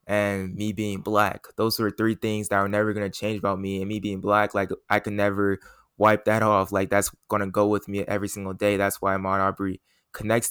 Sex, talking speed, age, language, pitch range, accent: male, 230 wpm, 20-39, English, 100-115 Hz, American